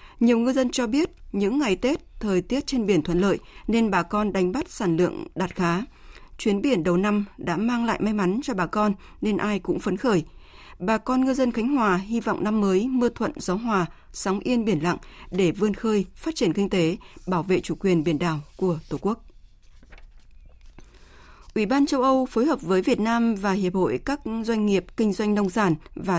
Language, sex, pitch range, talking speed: Vietnamese, female, 180-230 Hz, 215 wpm